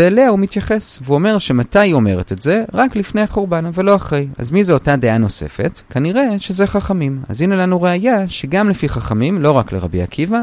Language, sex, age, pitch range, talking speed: Hebrew, male, 30-49, 130-195 Hz, 205 wpm